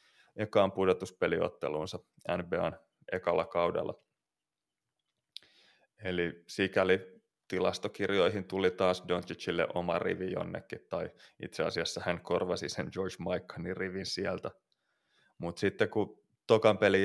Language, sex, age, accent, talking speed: Finnish, male, 20-39, native, 100 wpm